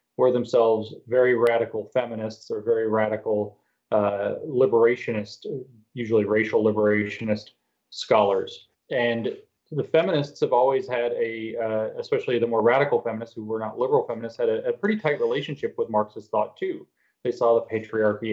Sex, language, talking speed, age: male, English, 150 wpm, 30-49